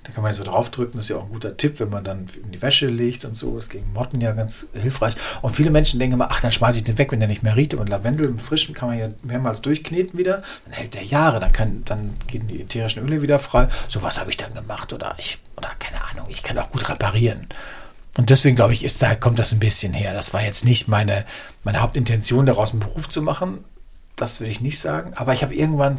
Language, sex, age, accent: German, male, 40-59, German